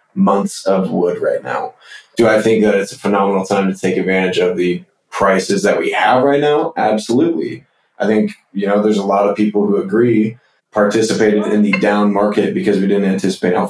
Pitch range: 100-110 Hz